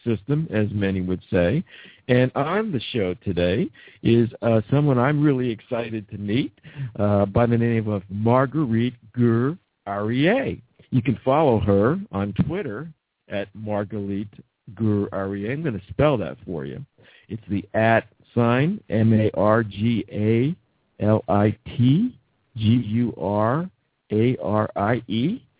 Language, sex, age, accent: English, male, 50-69, American